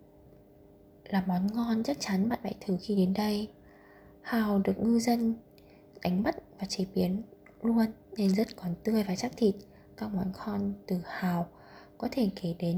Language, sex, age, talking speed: Vietnamese, female, 20-39, 175 wpm